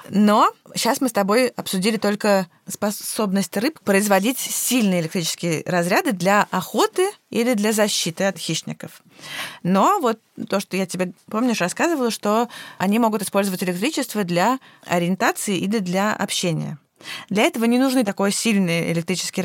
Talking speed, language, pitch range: 140 wpm, Russian, 180-220 Hz